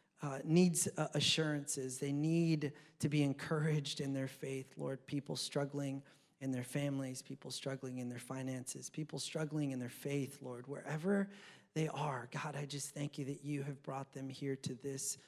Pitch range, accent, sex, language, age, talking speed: 140-180 Hz, American, male, English, 30-49, 175 wpm